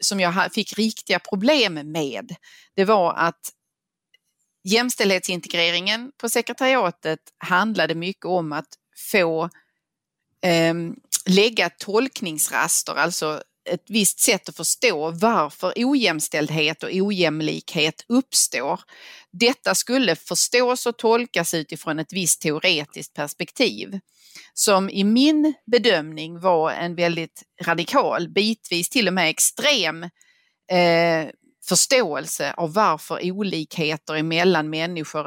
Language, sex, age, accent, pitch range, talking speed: Swedish, female, 30-49, native, 160-215 Hz, 100 wpm